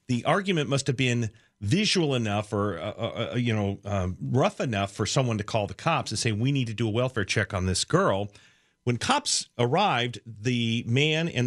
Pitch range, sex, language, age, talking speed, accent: 105-130 Hz, male, English, 40-59, 205 wpm, American